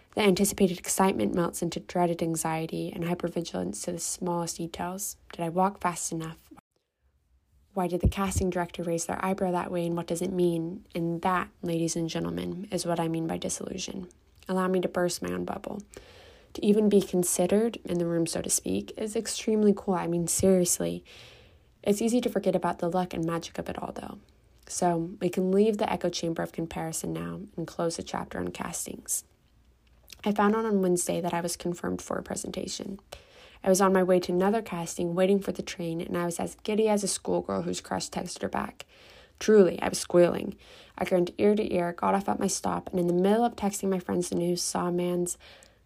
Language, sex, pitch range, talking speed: English, female, 170-195 Hz, 210 wpm